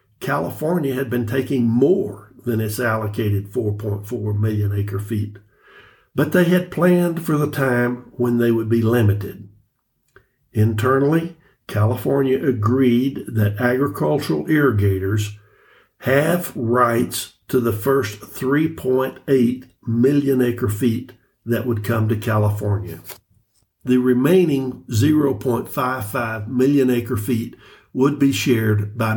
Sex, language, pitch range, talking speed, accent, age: male, English, 110-135 Hz, 105 wpm, American, 60-79